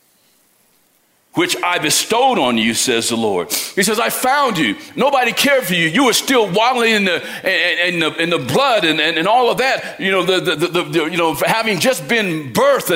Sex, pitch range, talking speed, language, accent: male, 190-280 Hz, 175 wpm, English, American